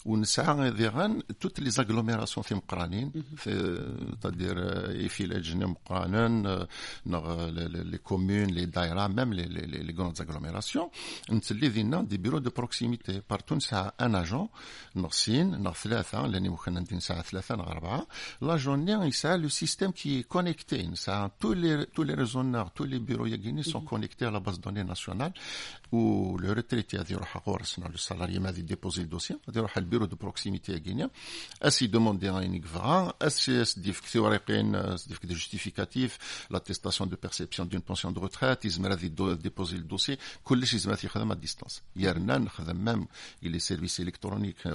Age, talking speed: 50-69, 130 wpm